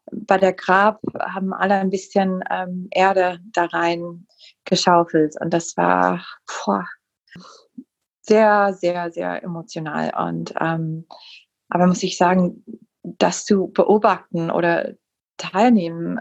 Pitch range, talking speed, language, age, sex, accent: 165-190 Hz, 115 wpm, German, 30-49, female, German